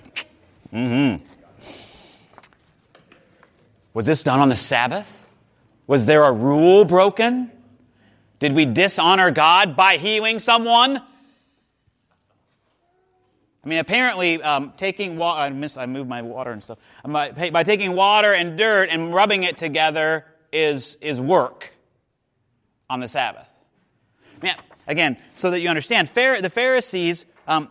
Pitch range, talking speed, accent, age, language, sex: 140-190 Hz, 125 wpm, American, 30-49, English, male